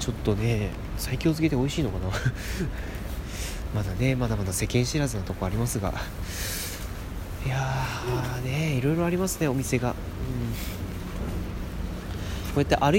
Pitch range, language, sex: 95-130 Hz, Japanese, male